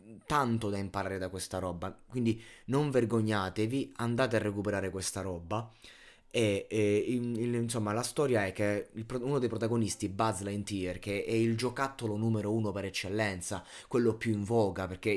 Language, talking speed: Italian, 155 wpm